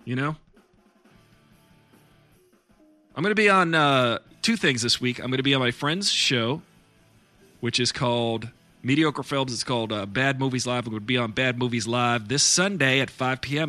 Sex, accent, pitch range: male, American, 115-155 Hz